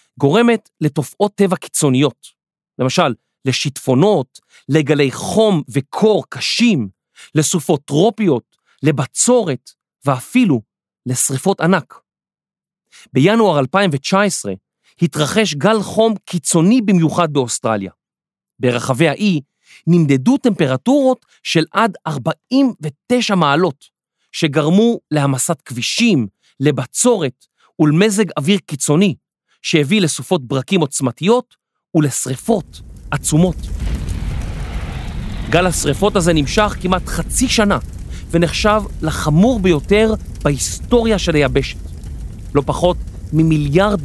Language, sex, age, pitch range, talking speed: Hebrew, male, 40-59, 130-195 Hz, 80 wpm